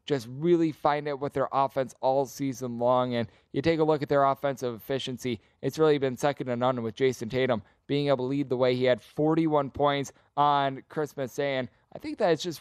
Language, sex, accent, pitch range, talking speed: English, male, American, 130-160 Hz, 225 wpm